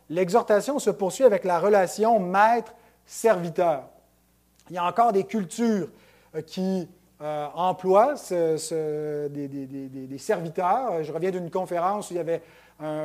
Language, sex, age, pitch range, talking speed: French, male, 30-49, 165-220 Hz, 135 wpm